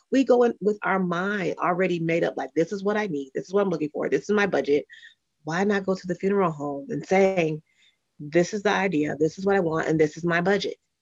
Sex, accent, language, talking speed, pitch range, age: female, American, English, 260 wpm, 160-220 Hz, 30-49